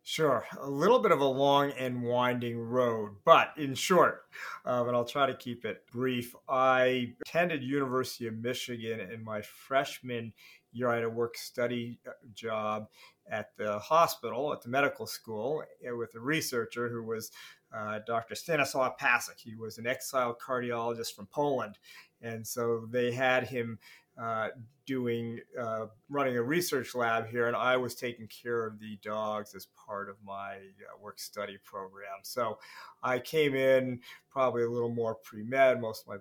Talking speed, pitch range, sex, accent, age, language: 165 wpm, 110-125 Hz, male, American, 40-59, English